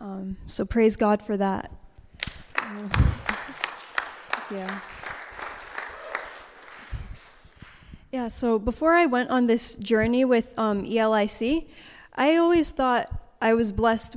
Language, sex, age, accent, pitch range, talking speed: English, female, 20-39, American, 215-245 Hz, 105 wpm